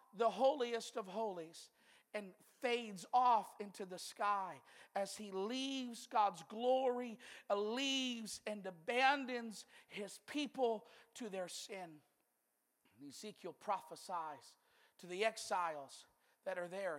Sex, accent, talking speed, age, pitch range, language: male, American, 110 wpm, 50-69, 195-245 Hz, English